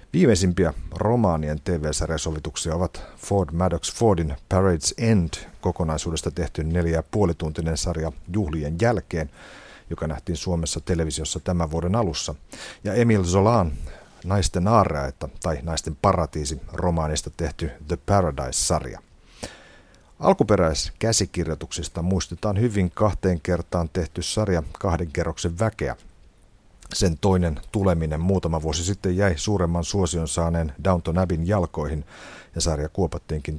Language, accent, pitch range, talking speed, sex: Finnish, native, 80-95 Hz, 110 wpm, male